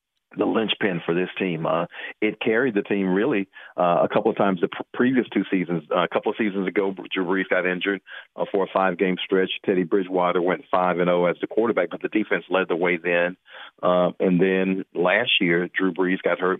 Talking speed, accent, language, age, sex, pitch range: 220 wpm, American, English, 50-69, male, 90-100 Hz